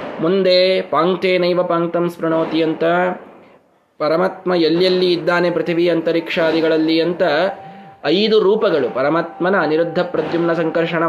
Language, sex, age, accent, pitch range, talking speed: Kannada, male, 20-39, native, 165-210 Hz, 85 wpm